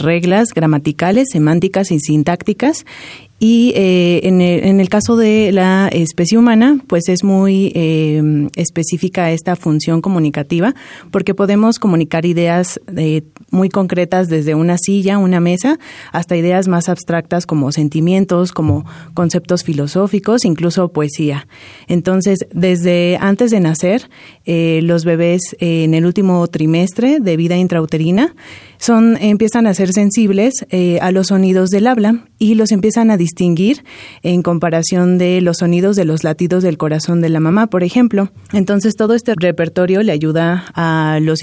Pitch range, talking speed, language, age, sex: 165-195 Hz, 150 wpm, Spanish, 30-49, female